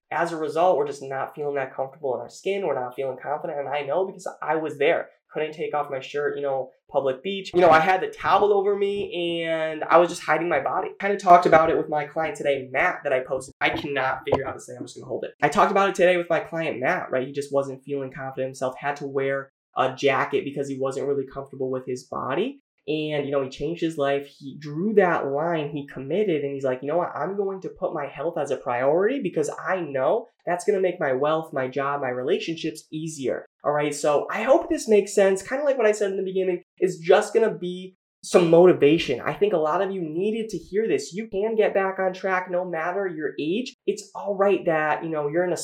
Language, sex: English, male